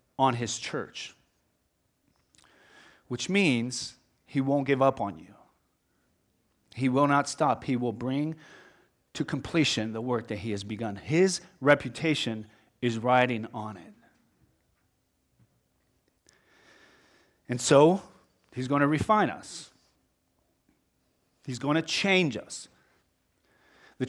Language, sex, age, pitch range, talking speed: English, male, 30-49, 120-165 Hz, 110 wpm